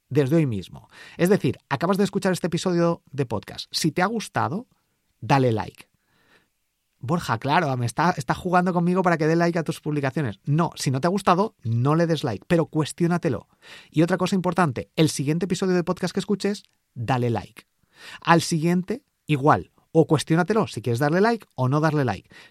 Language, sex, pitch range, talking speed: Spanish, male, 130-180 Hz, 185 wpm